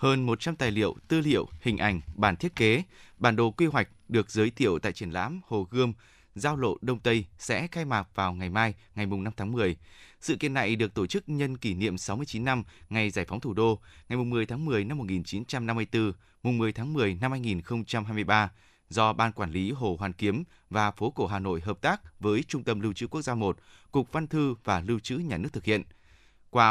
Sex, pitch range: male, 100-125 Hz